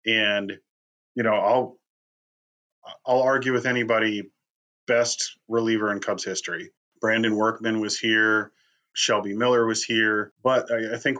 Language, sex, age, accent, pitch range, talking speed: English, male, 30-49, American, 100-115 Hz, 135 wpm